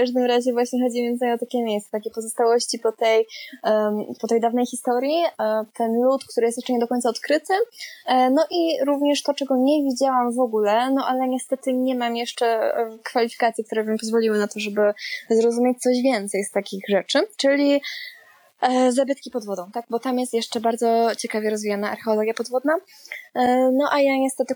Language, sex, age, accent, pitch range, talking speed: Polish, female, 20-39, native, 220-265 Hz, 175 wpm